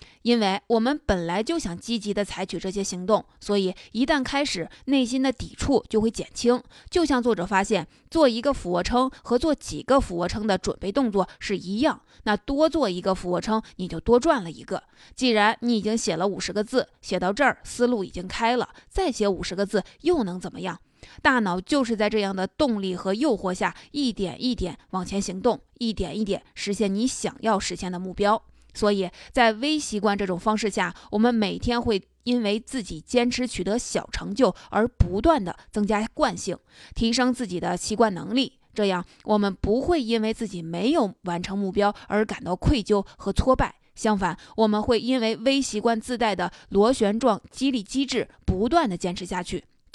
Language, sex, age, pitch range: Chinese, female, 20-39, 190-245 Hz